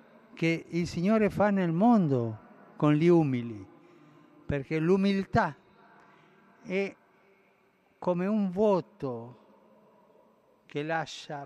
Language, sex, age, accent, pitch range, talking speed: Italian, male, 60-79, native, 130-165 Hz, 90 wpm